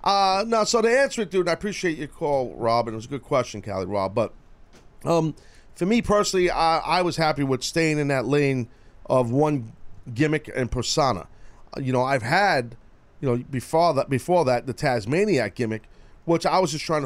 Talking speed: 195 wpm